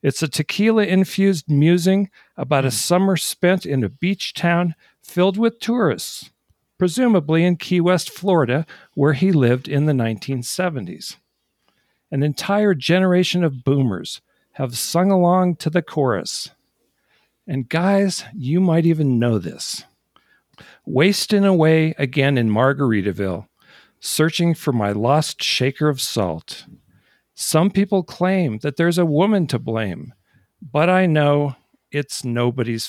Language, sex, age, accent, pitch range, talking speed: English, male, 50-69, American, 135-180 Hz, 130 wpm